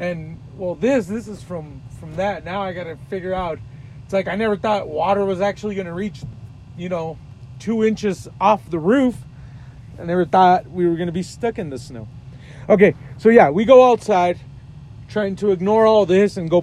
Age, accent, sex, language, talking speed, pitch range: 30-49, American, male, English, 205 wpm, 135-200 Hz